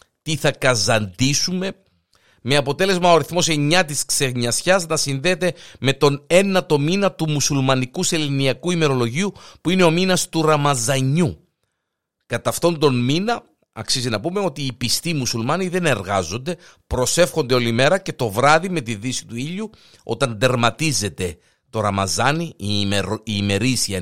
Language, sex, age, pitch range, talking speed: Greek, male, 50-69, 115-165 Hz, 145 wpm